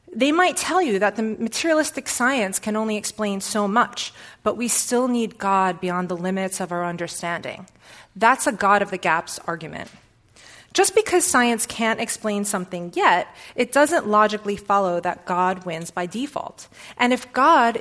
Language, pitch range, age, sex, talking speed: English, 200-265 Hz, 30-49, female, 170 wpm